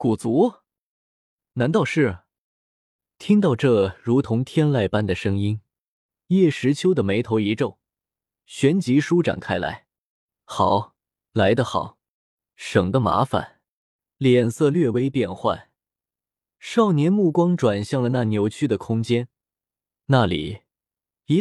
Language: Chinese